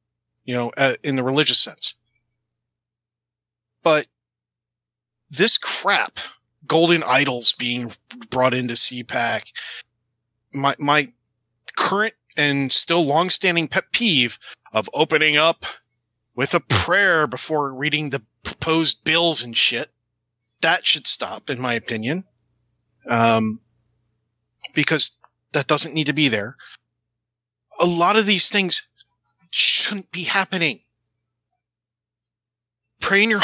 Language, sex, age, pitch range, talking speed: English, male, 30-49, 120-165 Hz, 110 wpm